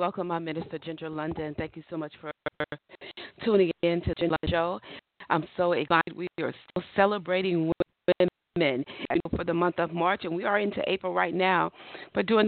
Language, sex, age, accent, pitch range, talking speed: English, female, 40-59, American, 160-185 Hz, 190 wpm